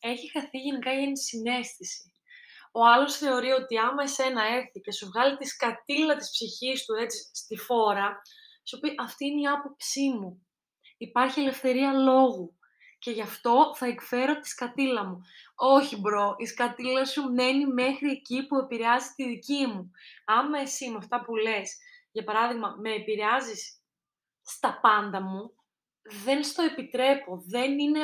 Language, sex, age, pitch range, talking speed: Greek, female, 20-39, 220-275 Hz, 155 wpm